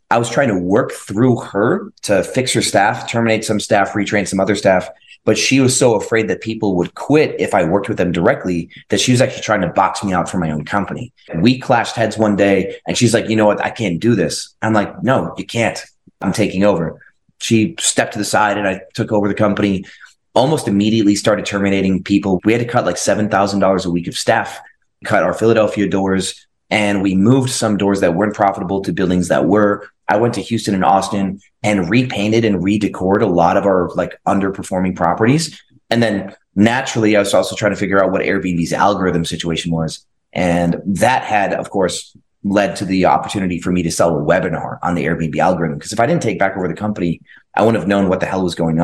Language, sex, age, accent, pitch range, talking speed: English, male, 30-49, American, 95-110 Hz, 220 wpm